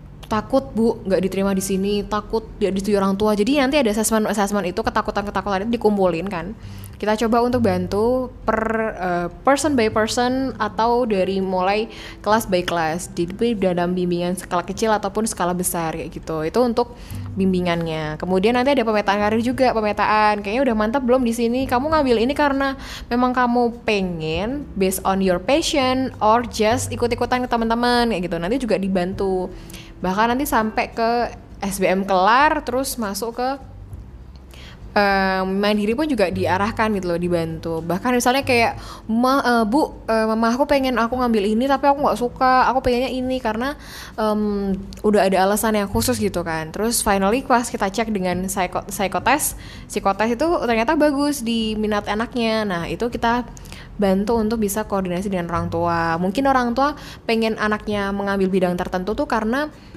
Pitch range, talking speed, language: 190-240 Hz, 165 wpm, Indonesian